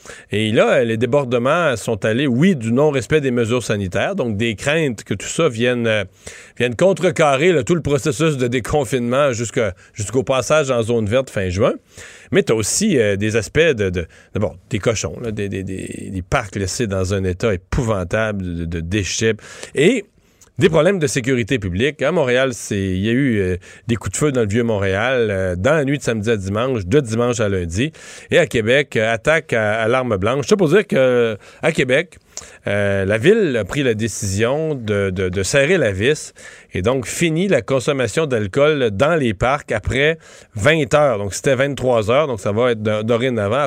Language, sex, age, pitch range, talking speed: French, male, 40-59, 105-140 Hz, 195 wpm